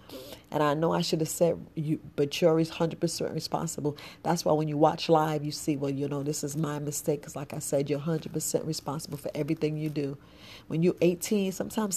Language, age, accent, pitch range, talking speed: English, 40-59, American, 150-170 Hz, 210 wpm